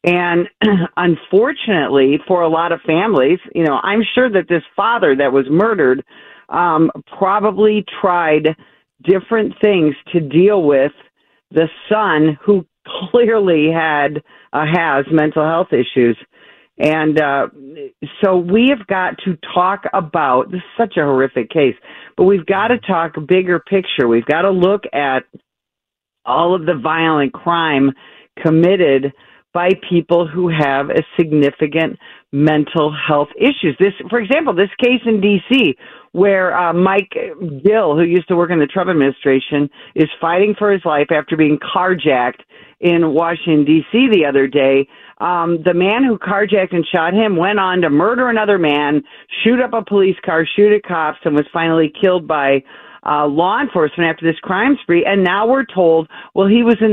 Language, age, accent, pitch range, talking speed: English, 50-69, American, 155-200 Hz, 160 wpm